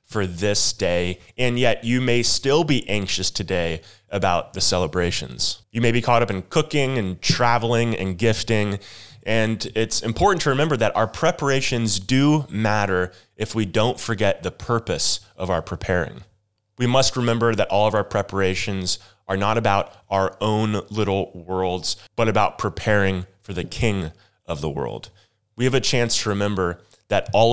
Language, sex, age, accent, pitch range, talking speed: English, male, 20-39, American, 95-115 Hz, 165 wpm